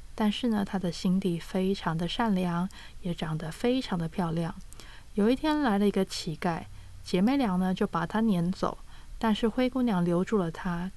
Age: 20-39